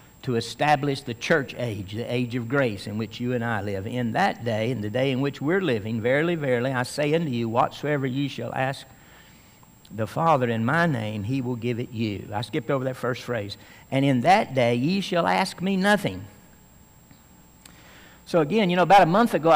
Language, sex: English, male